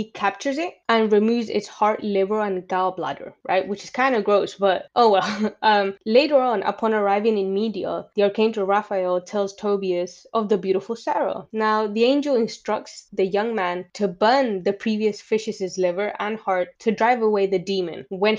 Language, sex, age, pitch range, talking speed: English, female, 20-39, 195-230 Hz, 185 wpm